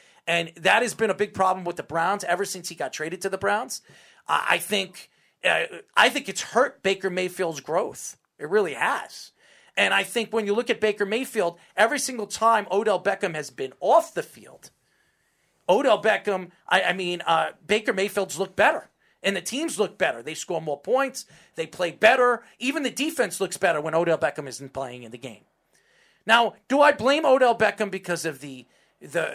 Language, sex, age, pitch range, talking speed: English, male, 40-59, 170-215 Hz, 190 wpm